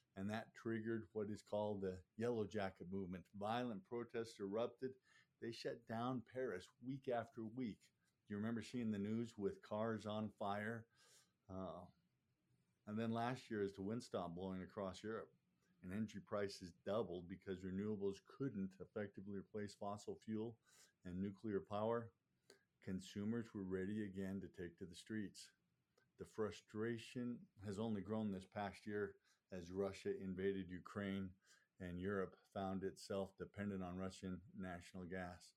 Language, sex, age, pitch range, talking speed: English, male, 50-69, 95-115 Hz, 145 wpm